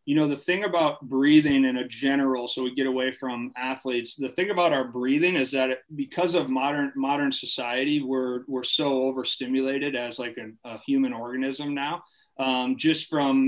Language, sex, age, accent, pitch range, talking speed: English, male, 30-49, American, 125-145 Hz, 185 wpm